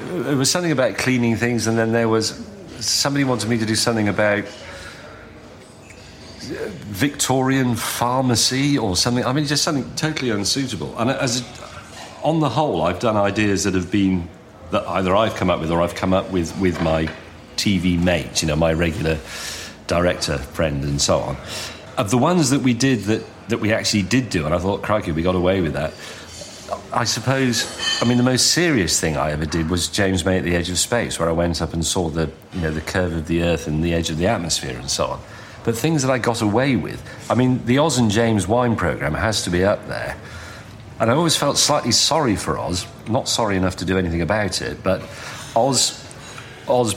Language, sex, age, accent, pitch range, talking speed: English, male, 40-59, British, 90-120 Hz, 210 wpm